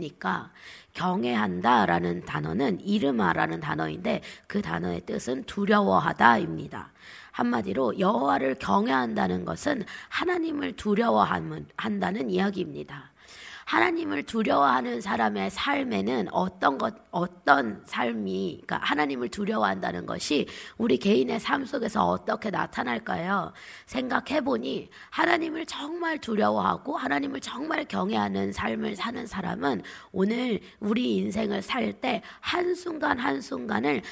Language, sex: Korean, female